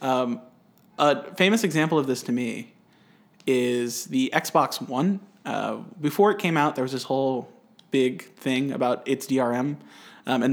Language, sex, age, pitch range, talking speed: English, male, 20-39, 130-185 Hz, 160 wpm